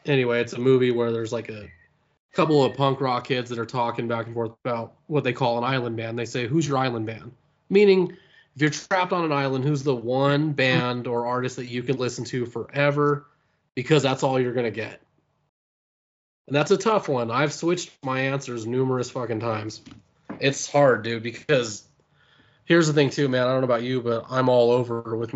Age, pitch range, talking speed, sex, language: 20-39, 120-145 Hz, 210 wpm, male, English